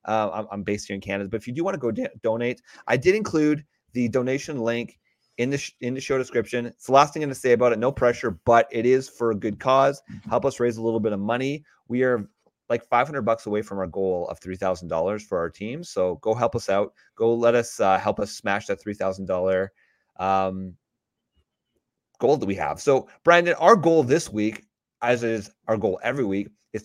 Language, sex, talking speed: English, male, 220 wpm